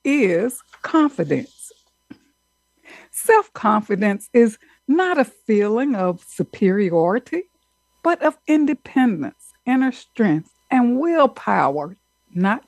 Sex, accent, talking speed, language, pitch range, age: female, American, 80 wpm, English, 195-270 Hz, 60-79